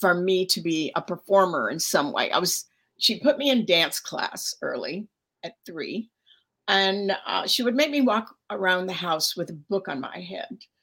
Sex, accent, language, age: female, American, English, 50-69